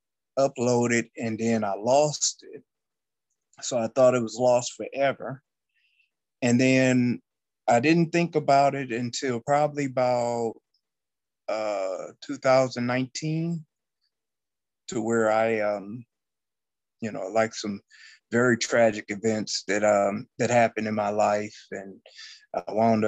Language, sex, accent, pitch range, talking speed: English, male, American, 110-130 Hz, 120 wpm